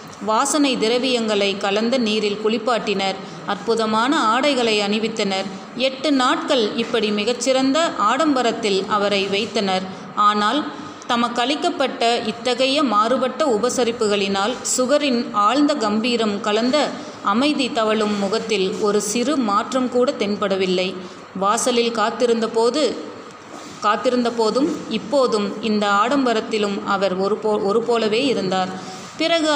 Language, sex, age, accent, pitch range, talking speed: Tamil, female, 30-49, native, 210-255 Hz, 90 wpm